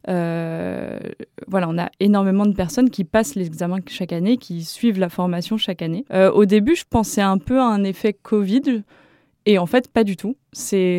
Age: 20-39